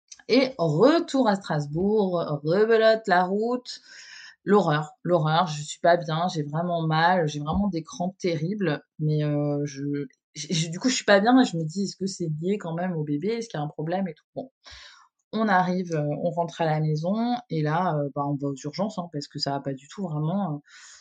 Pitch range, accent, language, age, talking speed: 155-200 Hz, French, French, 20-39, 220 wpm